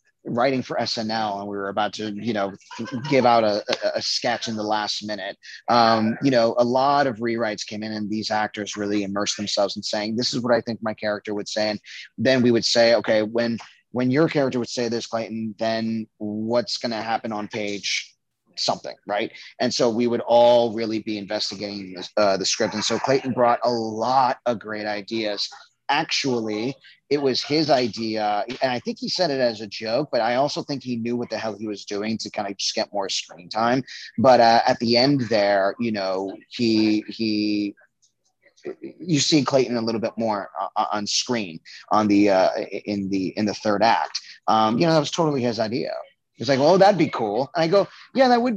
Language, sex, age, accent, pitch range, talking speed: English, male, 30-49, American, 105-125 Hz, 210 wpm